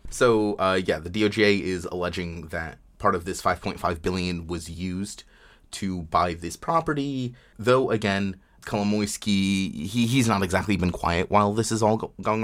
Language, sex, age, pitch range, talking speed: English, male, 30-49, 90-110 Hz, 160 wpm